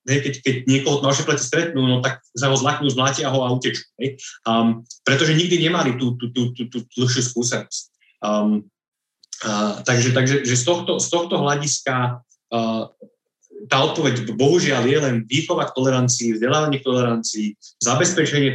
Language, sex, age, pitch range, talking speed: Slovak, male, 30-49, 115-135 Hz, 160 wpm